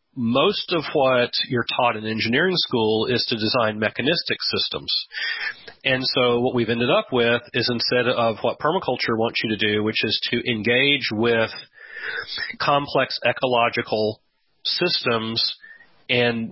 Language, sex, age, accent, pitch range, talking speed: English, male, 40-59, American, 115-140 Hz, 140 wpm